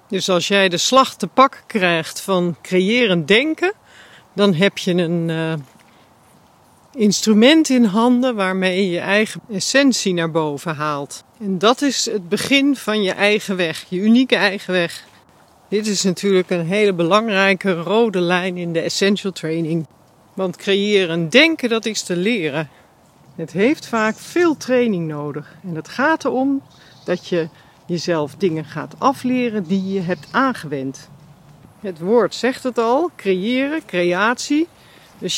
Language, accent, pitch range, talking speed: Dutch, Dutch, 170-220 Hz, 150 wpm